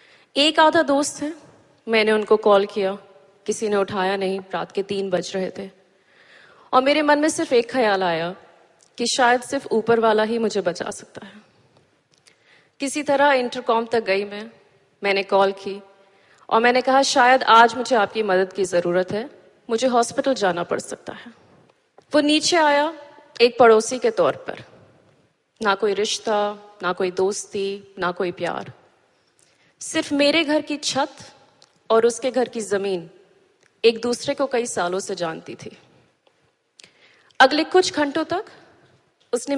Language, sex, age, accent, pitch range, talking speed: Hindi, female, 30-49, native, 195-260 Hz, 155 wpm